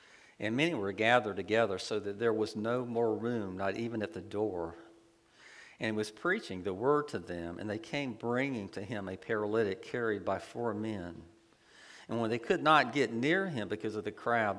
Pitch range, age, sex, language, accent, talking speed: 105-125 Hz, 50-69, male, English, American, 200 wpm